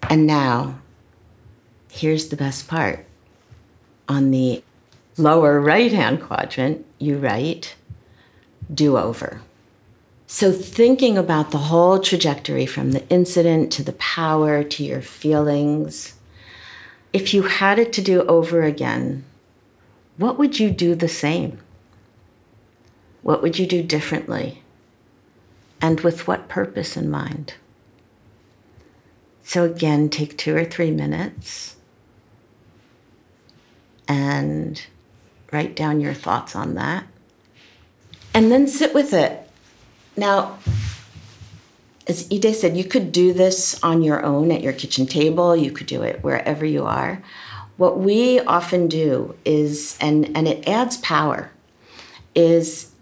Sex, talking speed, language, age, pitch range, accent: female, 120 wpm, English, 50-69, 120-170 Hz, American